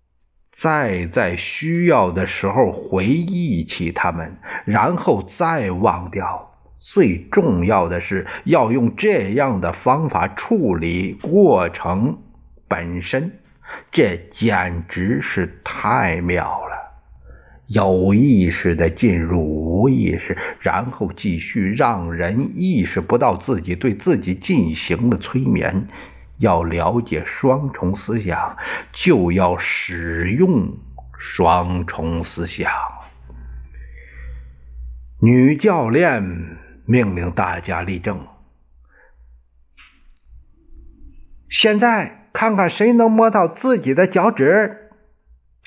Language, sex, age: Chinese, male, 50-69